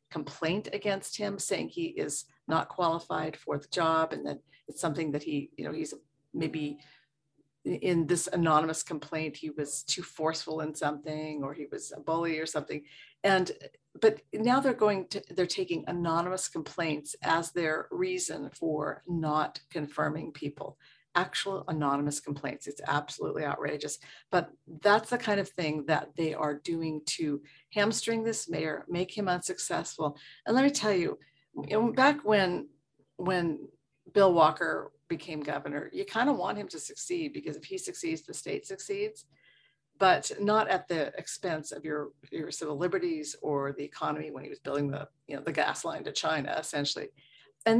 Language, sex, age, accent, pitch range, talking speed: English, female, 40-59, American, 150-205 Hz, 165 wpm